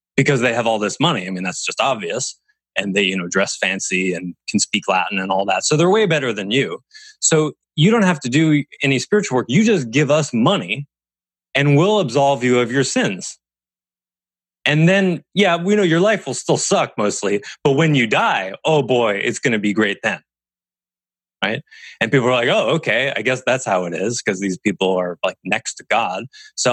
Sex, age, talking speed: male, 20-39, 215 wpm